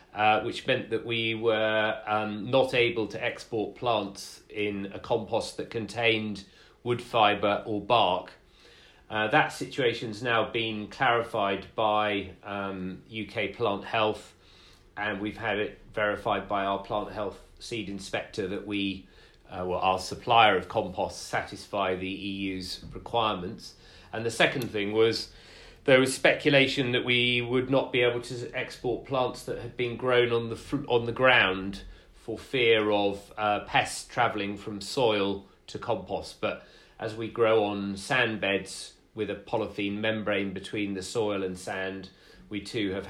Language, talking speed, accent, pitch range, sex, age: English, 160 wpm, British, 100-115 Hz, male, 30-49